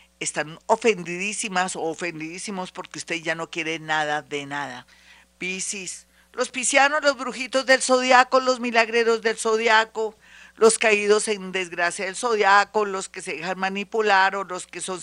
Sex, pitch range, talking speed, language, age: female, 175-225 Hz, 150 wpm, Spanish, 50-69